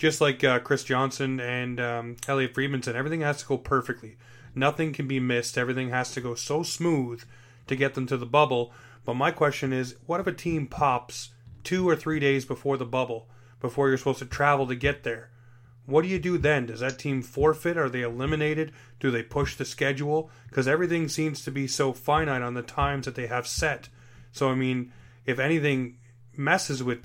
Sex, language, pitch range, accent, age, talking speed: male, English, 125-140 Hz, American, 30-49, 205 wpm